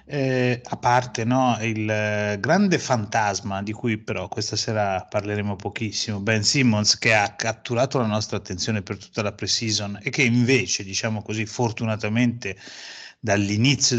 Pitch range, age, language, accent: 105-135 Hz, 30-49, Italian, native